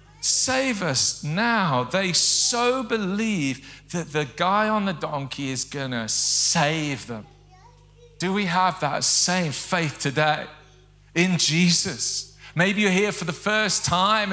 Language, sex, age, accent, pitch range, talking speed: English, male, 40-59, British, 160-235 Hz, 135 wpm